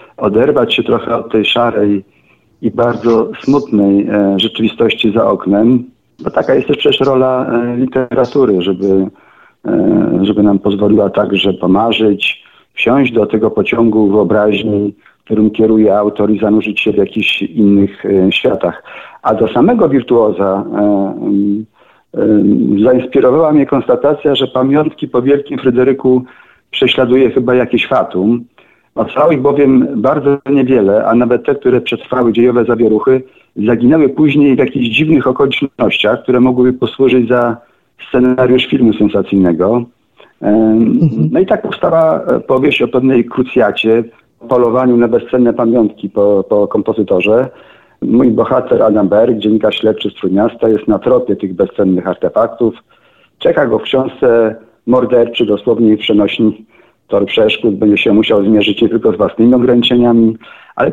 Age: 50-69